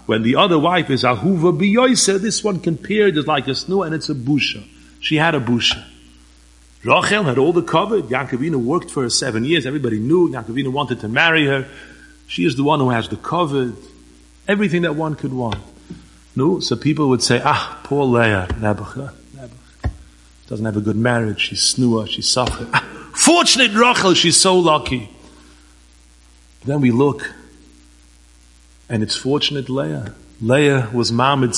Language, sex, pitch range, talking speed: English, male, 110-160 Hz, 170 wpm